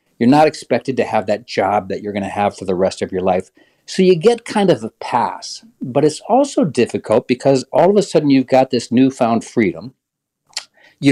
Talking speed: 215 wpm